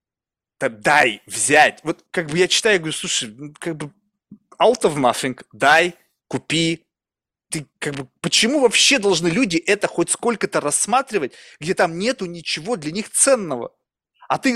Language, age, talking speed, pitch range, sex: Russian, 20-39, 155 wpm, 145-190 Hz, male